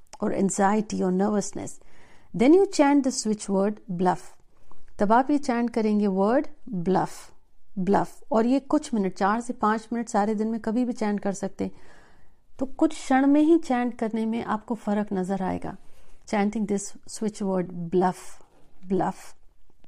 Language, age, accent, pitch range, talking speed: Hindi, 50-69, native, 195-245 Hz, 160 wpm